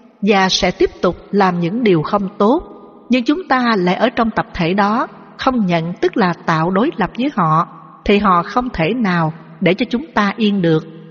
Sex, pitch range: female, 175-225 Hz